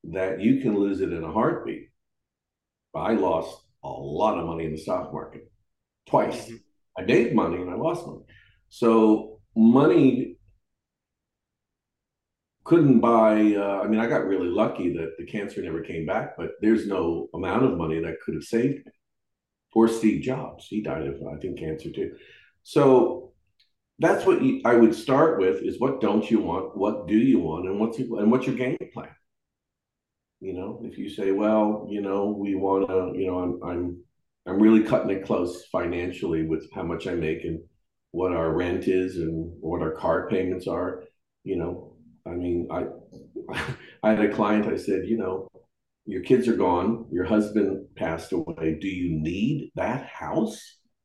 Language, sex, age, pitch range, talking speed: English, male, 50-69, 90-125 Hz, 175 wpm